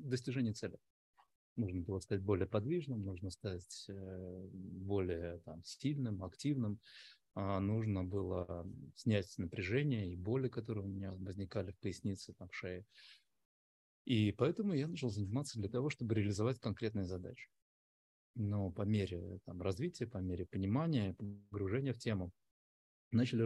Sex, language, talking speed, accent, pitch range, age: male, Russian, 125 wpm, native, 95-120 Hz, 20-39